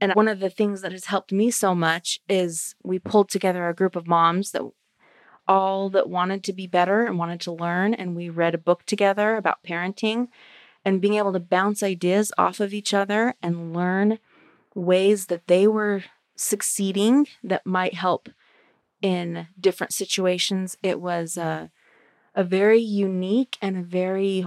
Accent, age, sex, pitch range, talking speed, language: American, 30-49, female, 175-200 Hz, 170 wpm, English